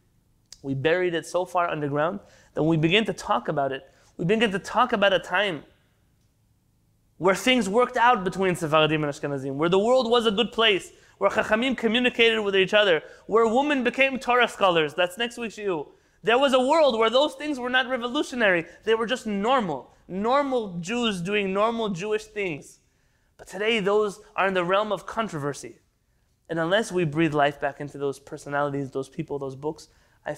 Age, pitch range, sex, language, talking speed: 20-39, 135-210 Hz, male, English, 185 wpm